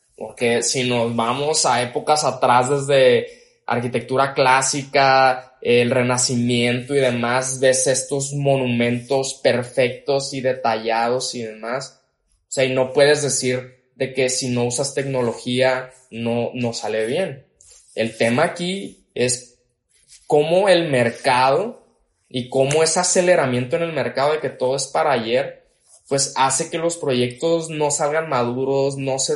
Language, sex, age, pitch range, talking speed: Spanish, male, 20-39, 120-140 Hz, 140 wpm